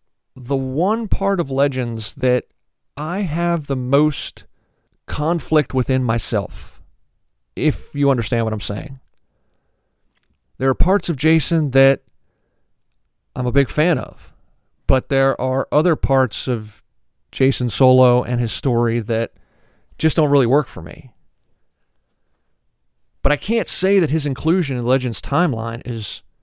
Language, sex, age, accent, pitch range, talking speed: English, male, 40-59, American, 115-145 Hz, 135 wpm